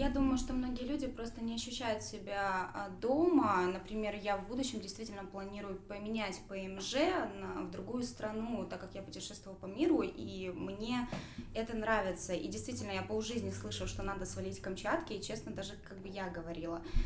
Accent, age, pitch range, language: native, 20-39, 200-245 Hz, Russian